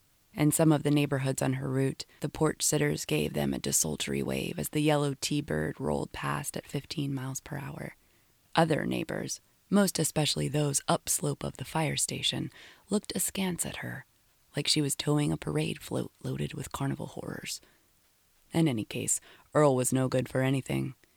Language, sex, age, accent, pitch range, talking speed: English, female, 20-39, American, 125-155 Hz, 170 wpm